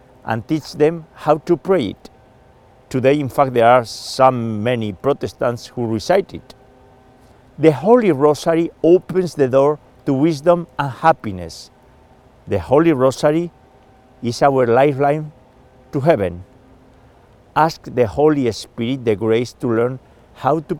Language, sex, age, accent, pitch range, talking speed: English, male, 50-69, Spanish, 110-140 Hz, 135 wpm